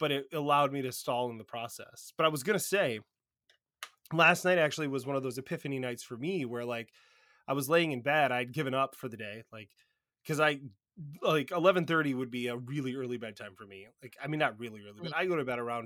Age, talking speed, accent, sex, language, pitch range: 20-39, 240 wpm, American, male, English, 120-155 Hz